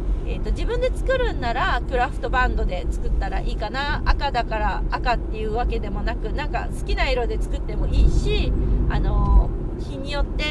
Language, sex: Japanese, female